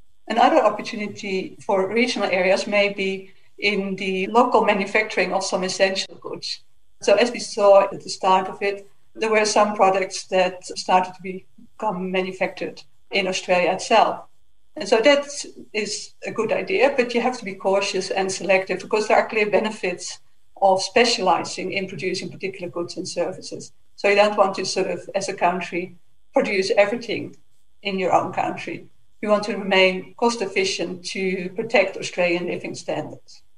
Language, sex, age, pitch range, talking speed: English, female, 50-69, 185-215 Hz, 160 wpm